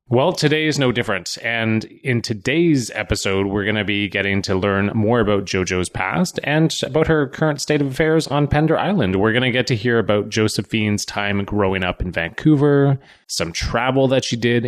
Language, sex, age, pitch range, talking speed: English, male, 20-39, 100-130 Hz, 195 wpm